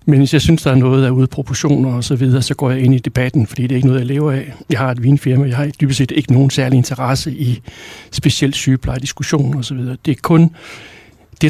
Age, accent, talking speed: 60-79, native, 270 wpm